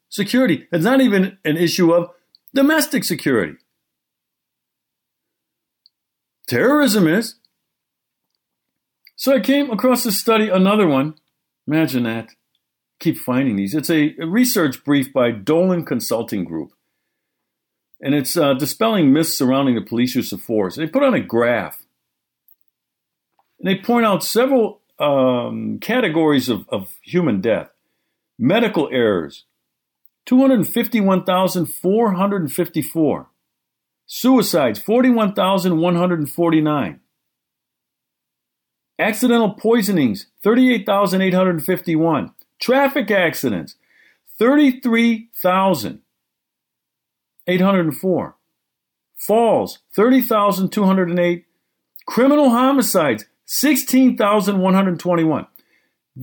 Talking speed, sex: 80 wpm, male